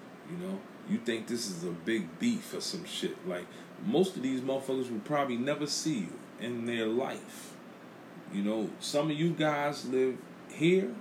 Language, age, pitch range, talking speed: English, 30-49, 105-140 Hz, 180 wpm